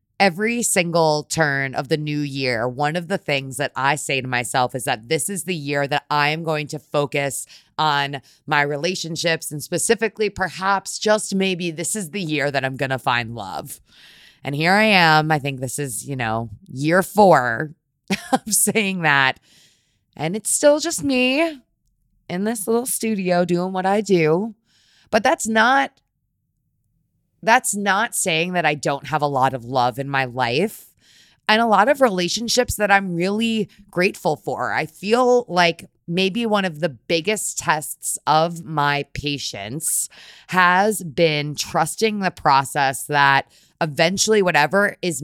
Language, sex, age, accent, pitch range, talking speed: English, female, 20-39, American, 145-195 Hz, 160 wpm